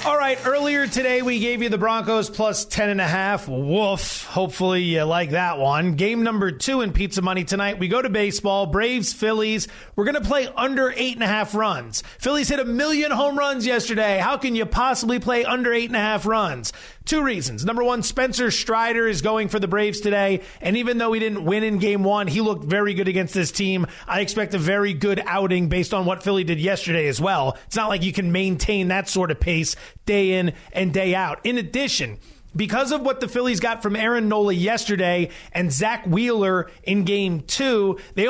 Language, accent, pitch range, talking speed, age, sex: English, American, 190-230 Hz, 215 wpm, 30-49, male